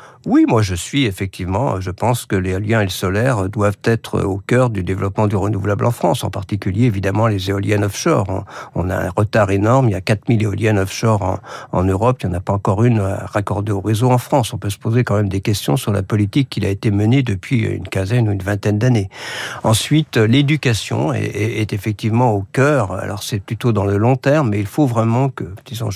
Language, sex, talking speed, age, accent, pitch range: French, male, 225 wpm, 50-69, French, 100-120 Hz